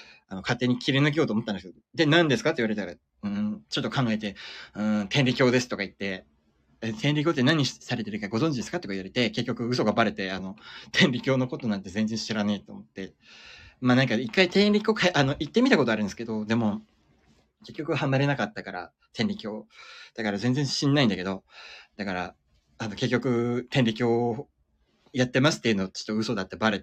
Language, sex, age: Japanese, male, 20-39